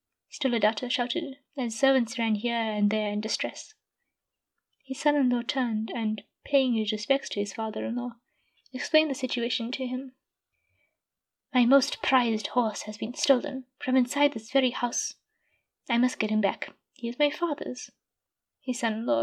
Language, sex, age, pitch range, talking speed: English, female, 20-39, 225-275 Hz, 150 wpm